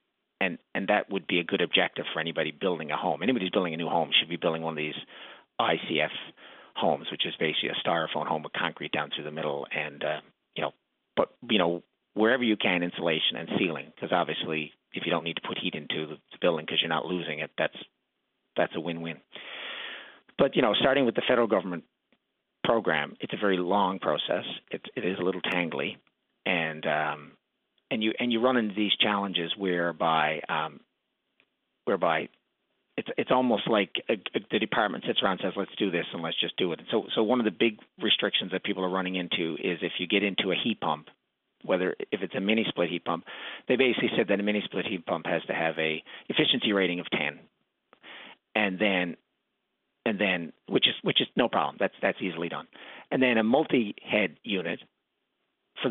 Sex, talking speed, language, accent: male, 205 wpm, English, American